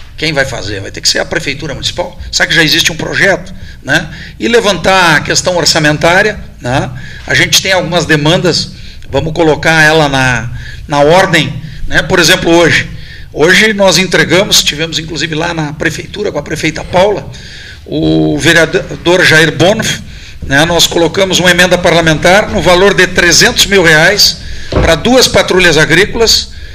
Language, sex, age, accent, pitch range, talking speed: Portuguese, male, 50-69, Brazilian, 150-185 Hz, 155 wpm